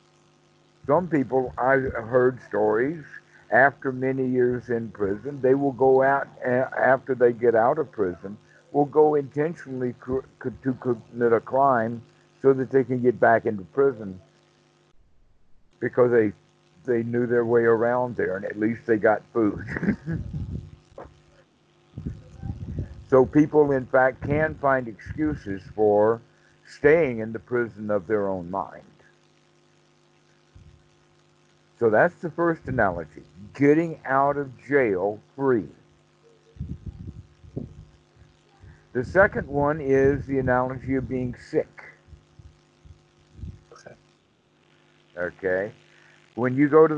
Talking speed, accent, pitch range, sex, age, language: 115 wpm, American, 115-140 Hz, male, 60-79, English